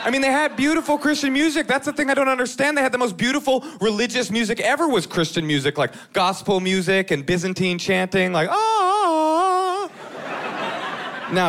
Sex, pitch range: male, 180-270 Hz